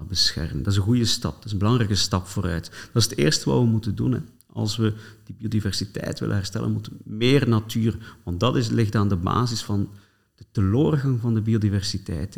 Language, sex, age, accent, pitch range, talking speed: Dutch, male, 50-69, Dutch, 100-120 Hz, 215 wpm